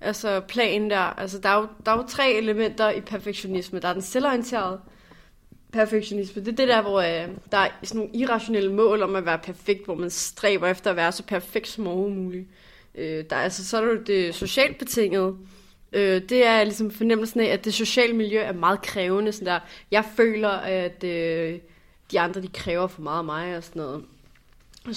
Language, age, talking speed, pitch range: Danish, 20-39, 205 wpm, 185-215 Hz